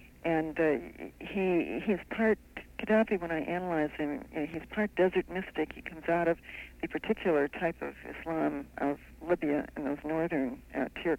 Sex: female